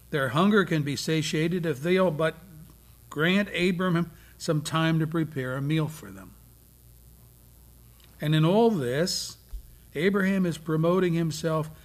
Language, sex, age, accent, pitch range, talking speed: English, male, 60-79, American, 120-200 Hz, 130 wpm